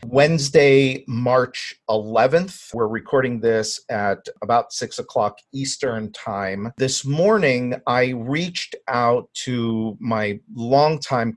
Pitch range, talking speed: 110-135 Hz, 105 wpm